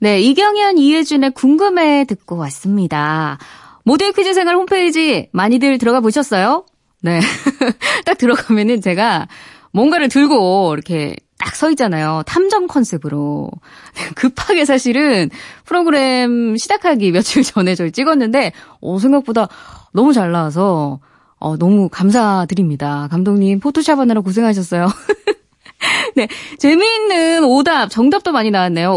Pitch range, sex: 195-310 Hz, female